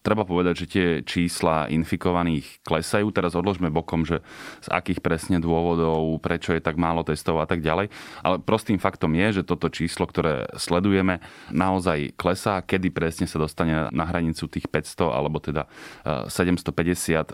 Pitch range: 80-95 Hz